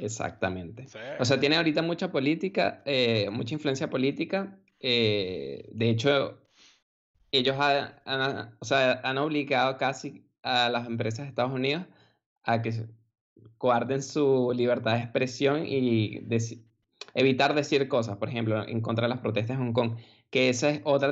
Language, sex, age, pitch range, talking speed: Spanish, male, 20-39, 115-145 Hz, 155 wpm